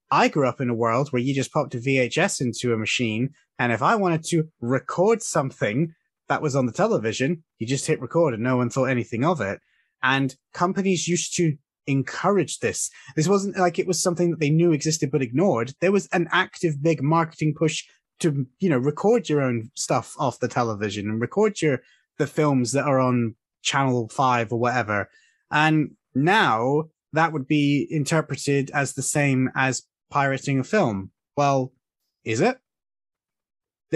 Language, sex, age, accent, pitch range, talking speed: English, male, 20-39, British, 130-170 Hz, 180 wpm